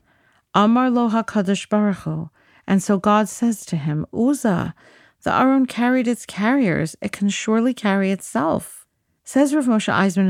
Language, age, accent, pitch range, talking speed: English, 50-69, American, 175-220 Hz, 140 wpm